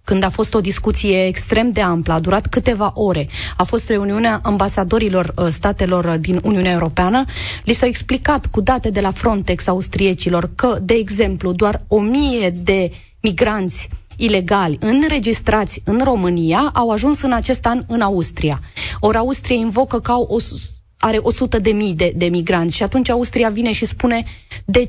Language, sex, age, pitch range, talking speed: Romanian, female, 30-49, 185-245 Hz, 160 wpm